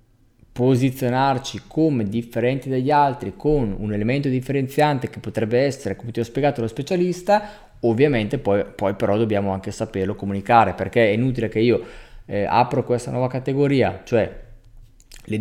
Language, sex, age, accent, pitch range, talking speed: Italian, male, 20-39, native, 105-130 Hz, 150 wpm